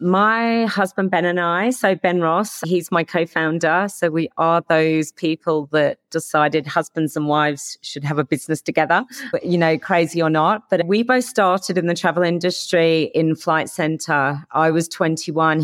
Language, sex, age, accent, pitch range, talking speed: English, female, 40-59, British, 150-175 Hz, 175 wpm